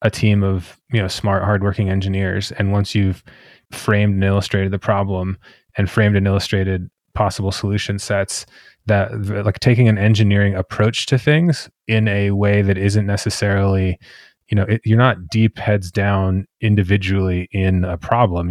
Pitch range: 95-110 Hz